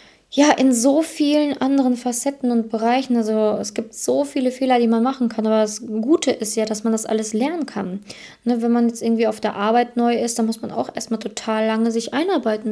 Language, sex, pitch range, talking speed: German, female, 210-235 Hz, 220 wpm